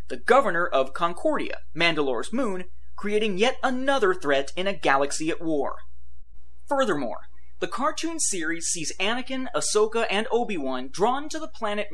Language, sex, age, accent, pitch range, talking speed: English, male, 30-49, American, 155-240 Hz, 140 wpm